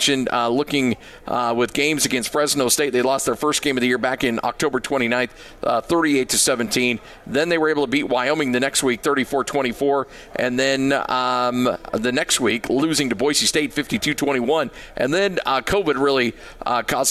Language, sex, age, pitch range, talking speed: English, male, 40-59, 120-145 Hz, 180 wpm